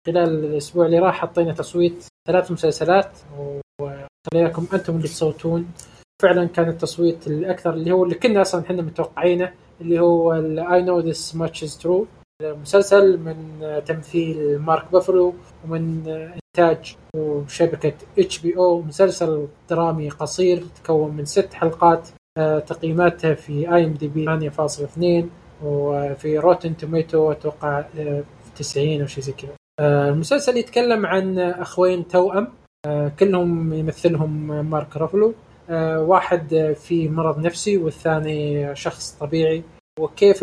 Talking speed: 120 wpm